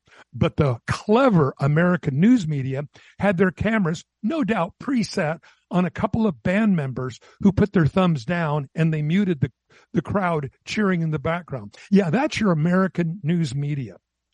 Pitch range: 140-205 Hz